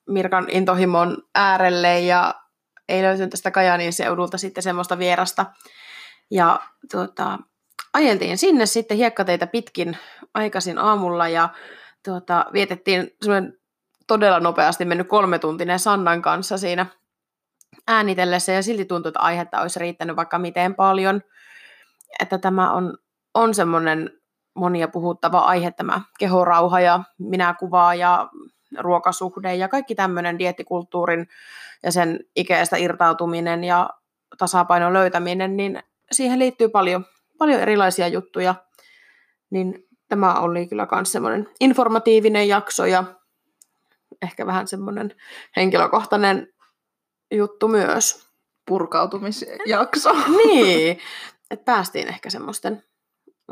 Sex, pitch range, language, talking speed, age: female, 175-210 Hz, Finnish, 105 wpm, 20-39